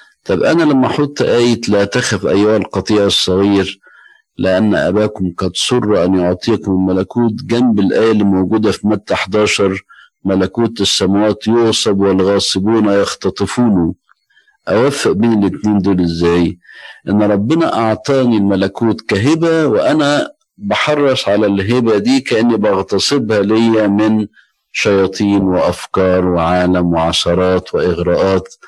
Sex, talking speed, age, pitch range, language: male, 110 wpm, 50-69, 95-125 Hz, Arabic